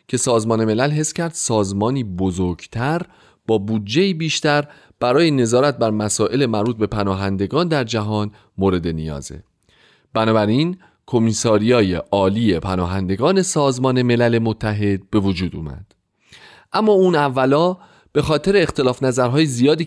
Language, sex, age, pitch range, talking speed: Persian, male, 30-49, 100-145 Hz, 120 wpm